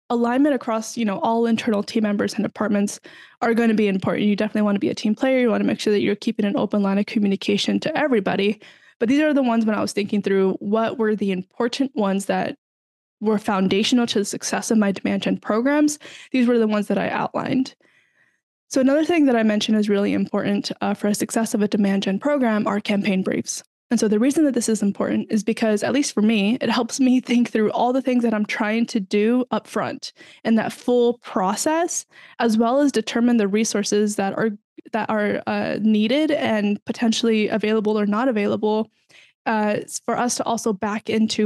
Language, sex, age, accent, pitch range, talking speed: English, female, 10-29, American, 205-240 Hz, 215 wpm